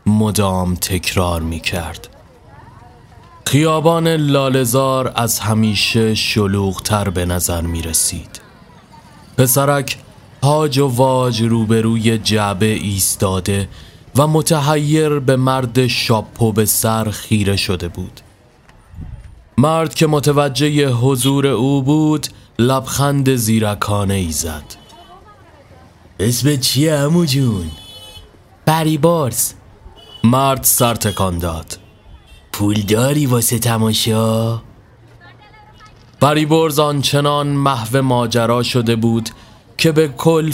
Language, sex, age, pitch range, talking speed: Persian, male, 30-49, 105-140 Hz, 90 wpm